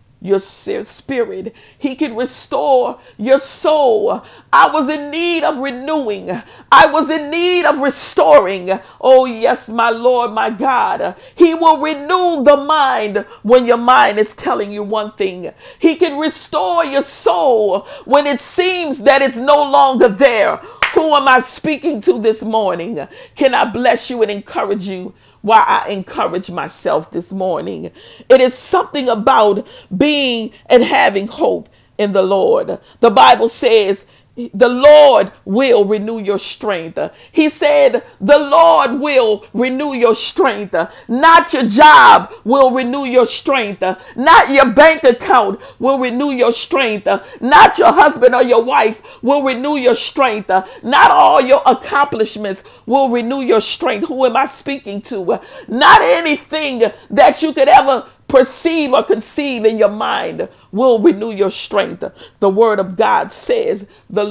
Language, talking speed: English, 150 wpm